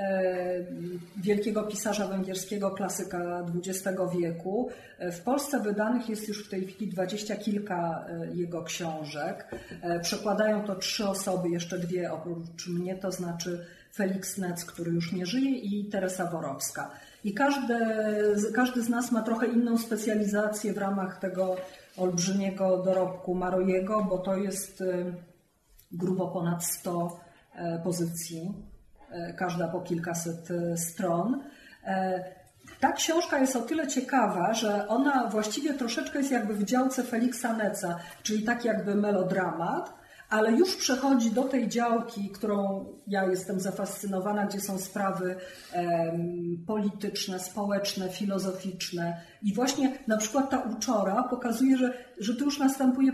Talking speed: 125 wpm